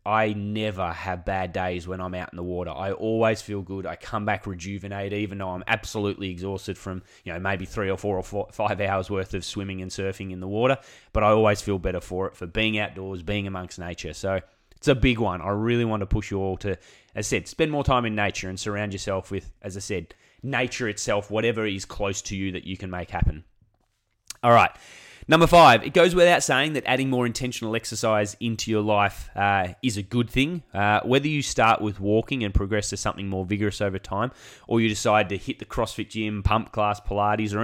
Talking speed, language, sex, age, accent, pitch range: 230 wpm, English, male, 20-39, Australian, 95-115 Hz